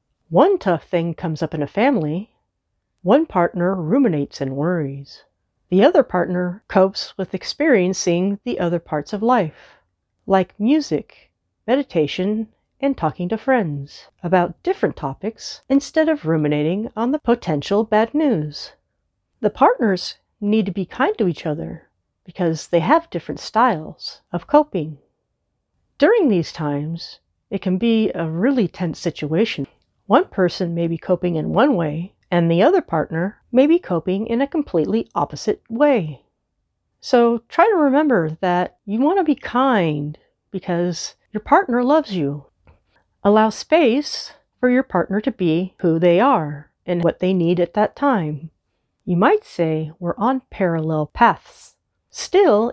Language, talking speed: English, 145 wpm